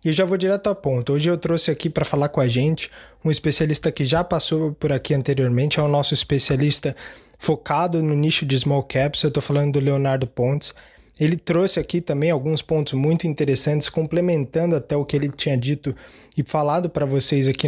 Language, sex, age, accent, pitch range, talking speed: Portuguese, male, 20-39, Brazilian, 140-170 Hz, 205 wpm